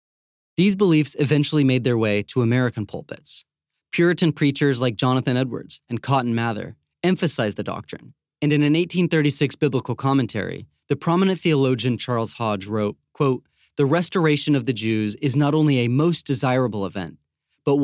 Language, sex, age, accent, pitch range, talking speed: English, male, 30-49, American, 110-150 Hz, 150 wpm